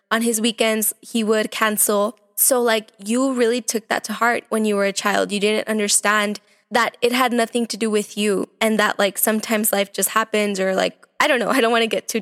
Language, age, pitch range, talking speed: English, 10-29, 215-255 Hz, 235 wpm